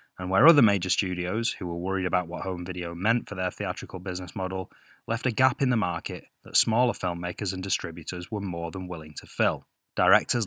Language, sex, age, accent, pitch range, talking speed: English, male, 20-39, British, 90-115 Hz, 205 wpm